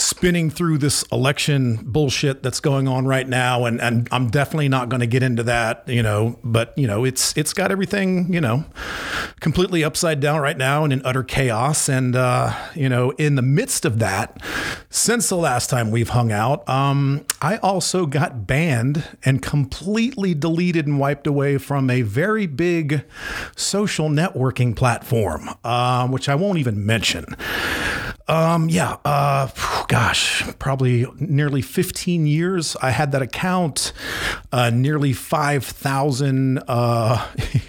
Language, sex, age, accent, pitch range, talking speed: English, male, 40-59, American, 125-155 Hz, 155 wpm